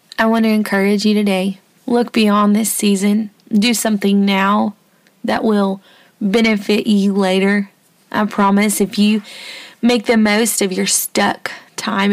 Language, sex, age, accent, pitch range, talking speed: English, female, 20-39, American, 190-215 Hz, 145 wpm